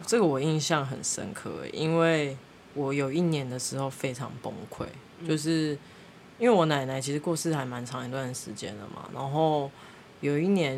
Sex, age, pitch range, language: female, 20-39, 130-165 Hz, Chinese